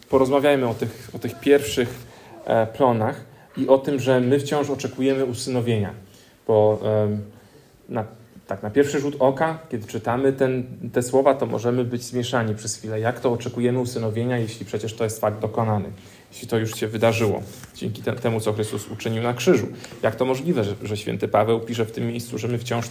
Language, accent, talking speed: Polish, native, 175 wpm